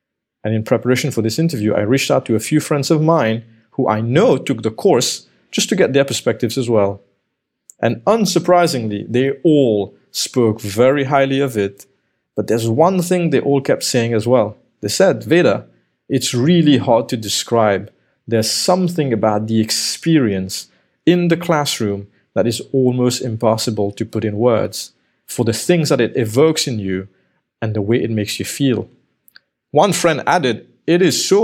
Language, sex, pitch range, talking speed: English, male, 110-145 Hz, 175 wpm